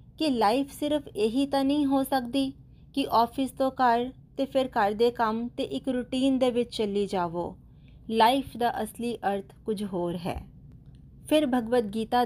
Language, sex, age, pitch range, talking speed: Punjabi, female, 30-49, 190-240 Hz, 160 wpm